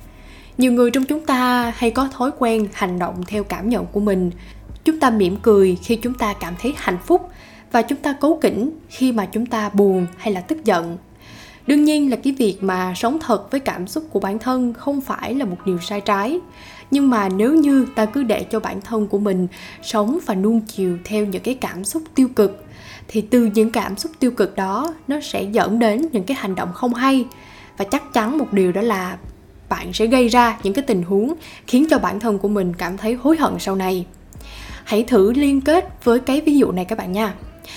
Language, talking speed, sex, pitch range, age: Vietnamese, 225 wpm, female, 195-260 Hz, 10-29